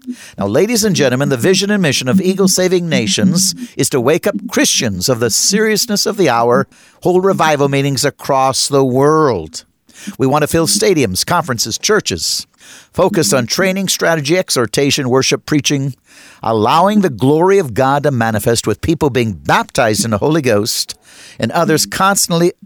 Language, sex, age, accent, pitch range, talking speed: English, male, 50-69, American, 120-170 Hz, 160 wpm